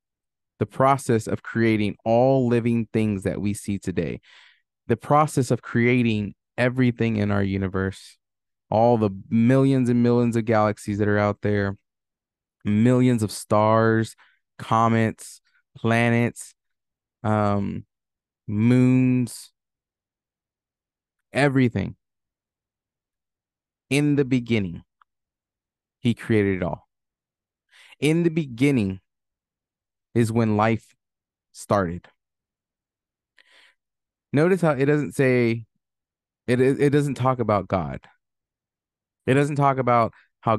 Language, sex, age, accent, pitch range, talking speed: English, male, 20-39, American, 105-125 Hz, 100 wpm